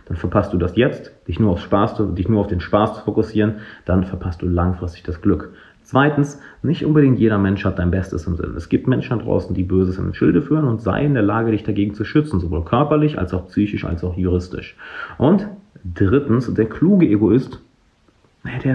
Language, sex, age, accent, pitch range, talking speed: German, male, 40-59, German, 95-130 Hz, 195 wpm